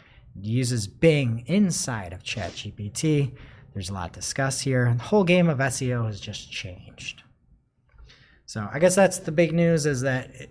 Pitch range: 115-165 Hz